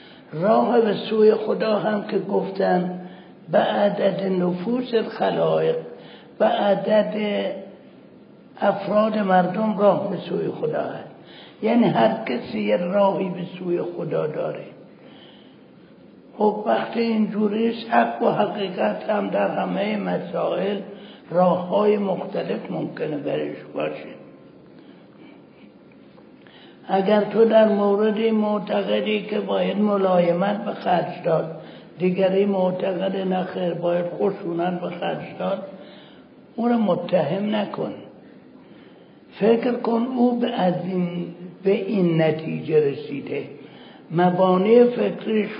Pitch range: 180-215 Hz